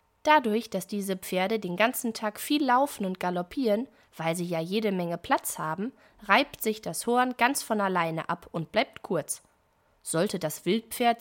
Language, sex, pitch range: German, female, 180-250 Hz